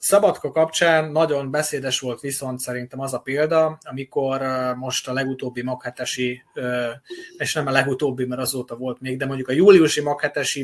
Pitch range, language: 125-155 Hz, Hungarian